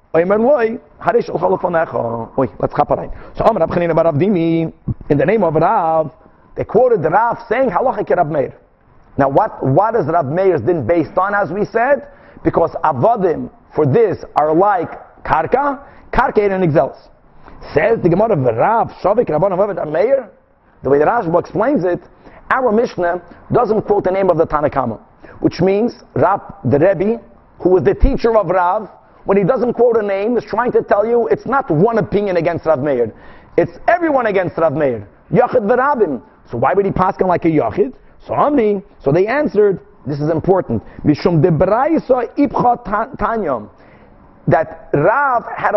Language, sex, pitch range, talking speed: English, male, 165-230 Hz, 145 wpm